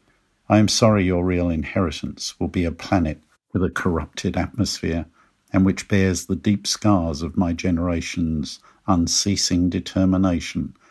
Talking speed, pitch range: 140 wpm, 85-100 Hz